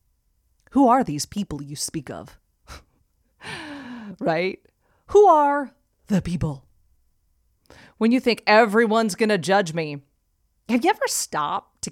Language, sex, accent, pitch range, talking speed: English, female, American, 160-240 Hz, 125 wpm